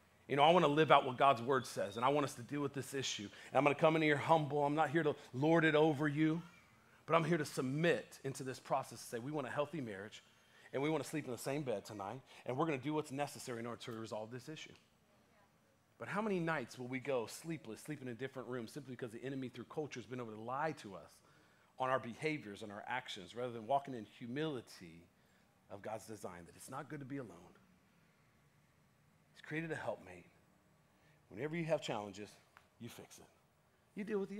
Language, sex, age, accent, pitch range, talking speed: English, male, 40-59, American, 120-160 Hz, 235 wpm